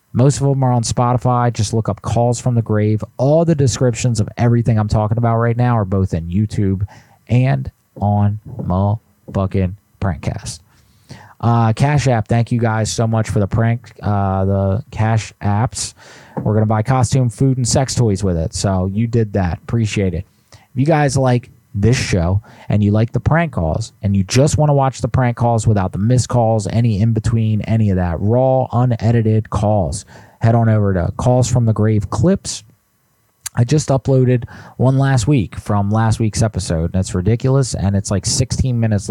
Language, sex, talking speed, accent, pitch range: English, male, 190 wpm, American, 100-125 Hz